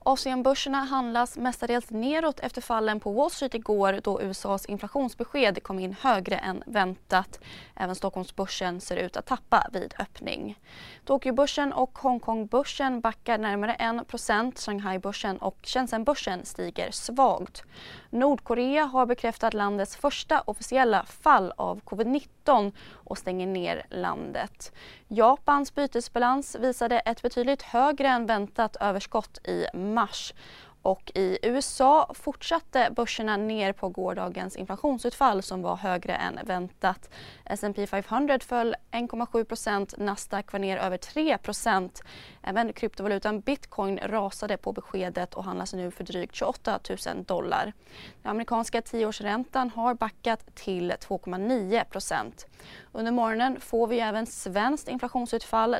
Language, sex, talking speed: Swedish, female, 125 wpm